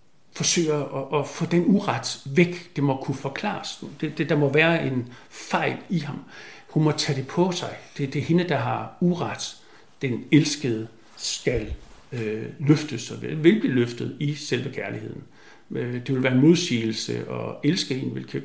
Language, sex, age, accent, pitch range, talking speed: Danish, male, 60-79, native, 115-150 Hz, 180 wpm